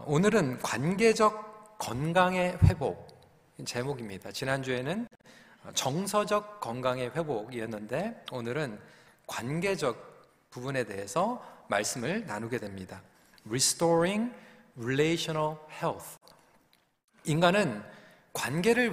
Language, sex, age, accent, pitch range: Korean, male, 40-59, native, 130-210 Hz